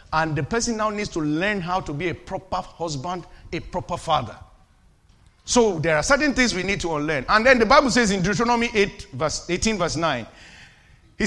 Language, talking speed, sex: English, 200 wpm, male